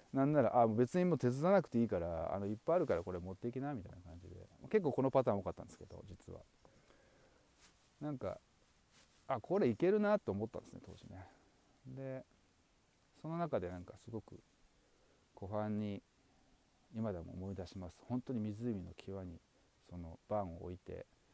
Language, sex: Japanese, male